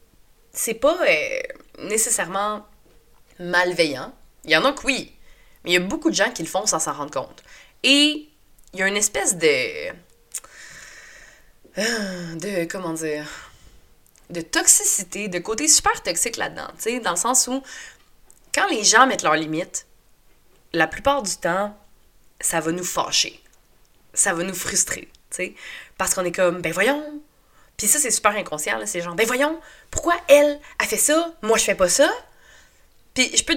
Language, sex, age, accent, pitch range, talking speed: French, female, 20-39, Canadian, 180-270 Hz, 170 wpm